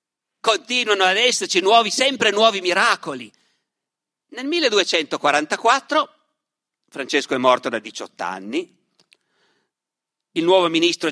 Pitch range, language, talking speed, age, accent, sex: 195-290 Hz, Italian, 95 wpm, 50-69, native, male